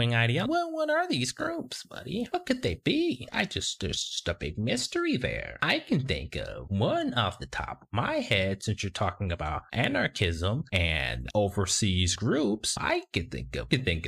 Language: English